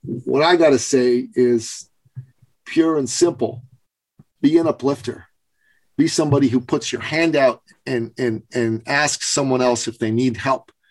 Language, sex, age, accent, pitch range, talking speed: English, male, 40-59, American, 125-165 Hz, 155 wpm